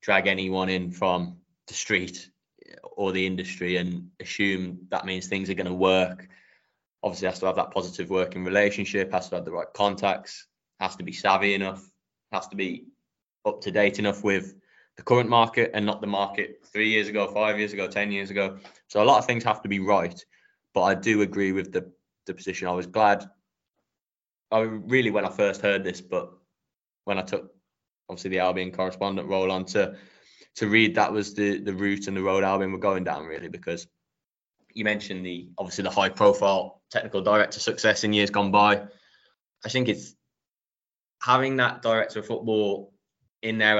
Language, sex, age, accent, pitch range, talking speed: English, male, 20-39, British, 95-105 Hz, 190 wpm